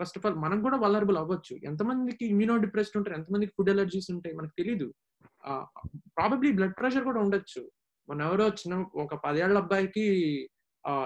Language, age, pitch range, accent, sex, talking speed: Telugu, 20-39, 160-215 Hz, native, male, 165 wpm